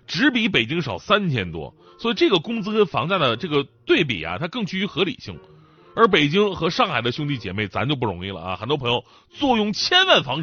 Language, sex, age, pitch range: Chinese, male, 30-49, 115-175 Hz